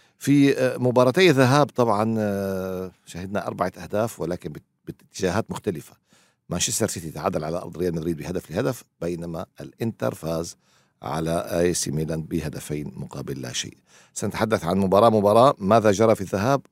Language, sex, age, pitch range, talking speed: Arabic, male, 50-69, 80-110 Hz, 140 wpm